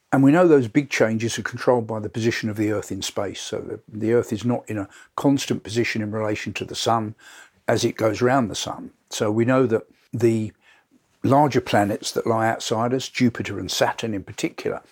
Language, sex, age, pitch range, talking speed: English, male, 50-69, 110-135 Hz, 210 wpm